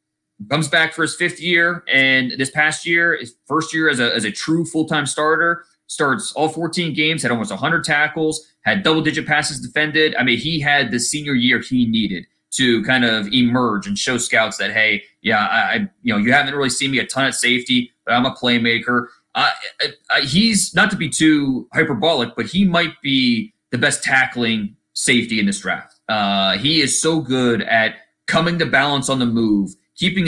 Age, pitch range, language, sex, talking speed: 20-39, 120-160 Hz, English, male, 200 wpm